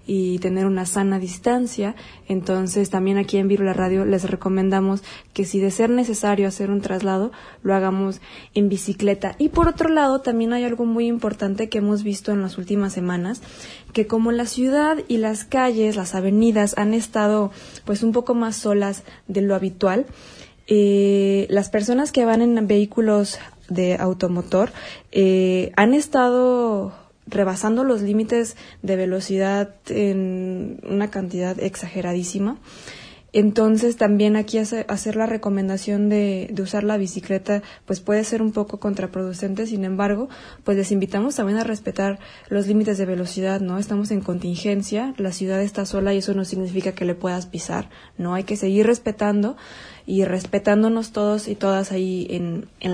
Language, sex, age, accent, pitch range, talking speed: Spanish, female, 20-39, Mexican, 195-220 Hz, 160 wpm